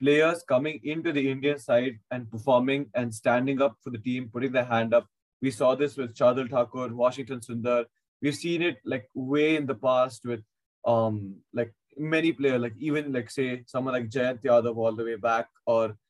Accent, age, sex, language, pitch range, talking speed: Indian, 20-39, male, English, 120-145 Hz, 195 wpm